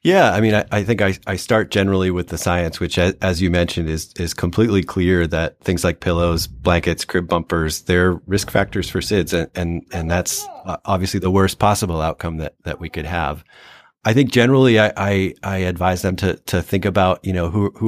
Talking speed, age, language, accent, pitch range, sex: 205 wpm, 30-49, English, American, 85-100 Hz, male